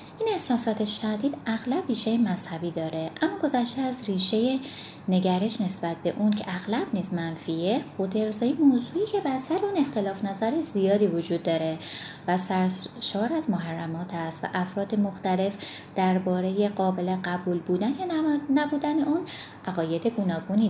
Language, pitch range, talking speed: Persian, 175-265 Hz, 140 wpm